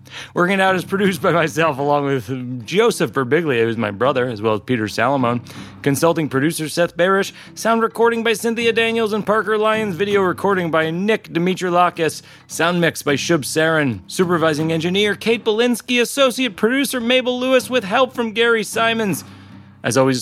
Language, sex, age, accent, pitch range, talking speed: English, male, 30-49, American, 130-195 Hz, 170 wpm